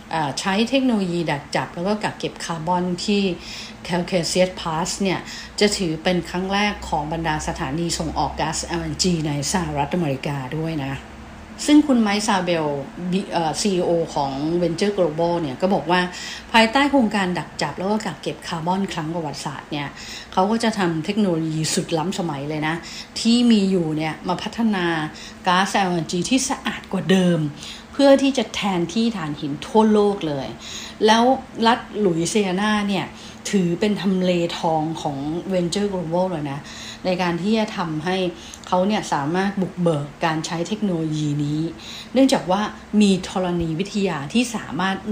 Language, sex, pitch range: English, female, 165-205 Hz